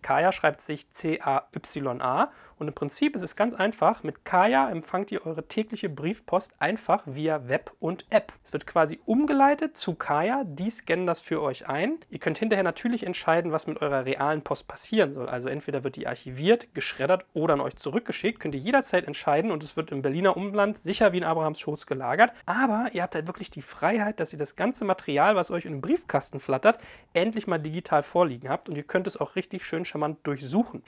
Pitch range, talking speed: 145-200 Hz, 210 wpm